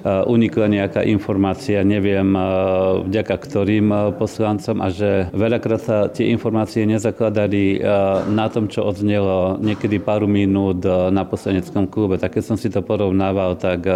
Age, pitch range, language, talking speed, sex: 40-59, 95-105 Hz, Slovak, 135 wpm, male